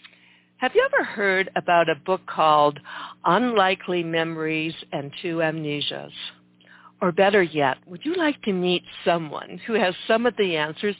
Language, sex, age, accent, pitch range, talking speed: English, female, 60-79, American, 155-195 Hz, 155 wpm